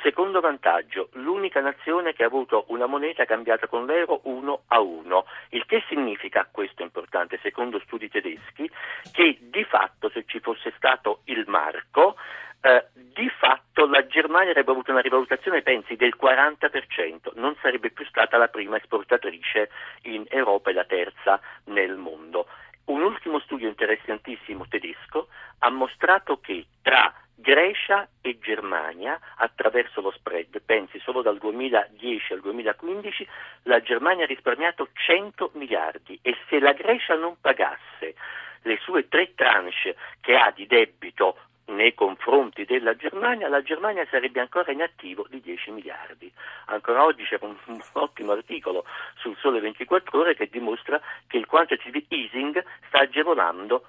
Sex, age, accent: male, 50-69, native